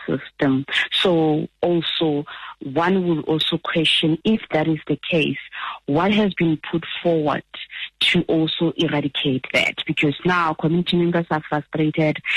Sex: female